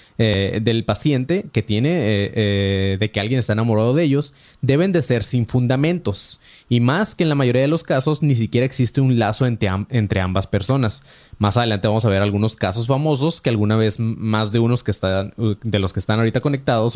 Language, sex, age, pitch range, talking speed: Spanish, male, 20-39, 105-130 Hz, 210 wpm